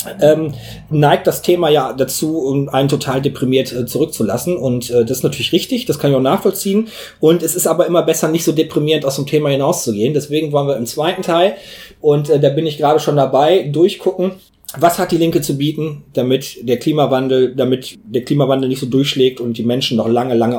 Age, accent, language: 30-49, German, German